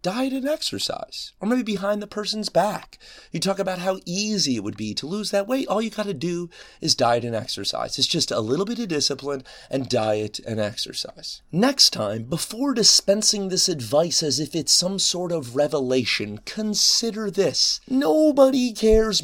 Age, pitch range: 30-49, 145-215 Hz